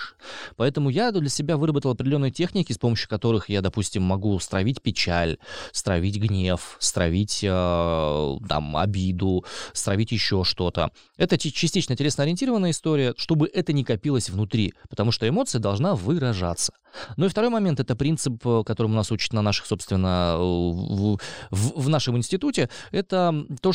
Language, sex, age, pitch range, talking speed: Russian, male, 20-39, 100-145 Hz, 145 wpm